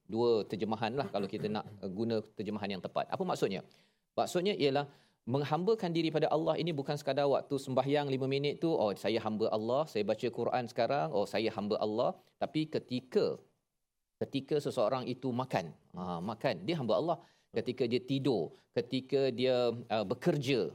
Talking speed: 160 wpm